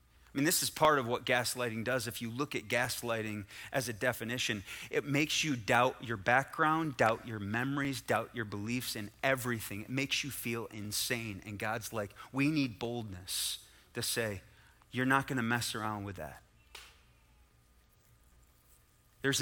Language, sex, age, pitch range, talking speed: English, male, 30-49, 105-130 Hz, 160 wpm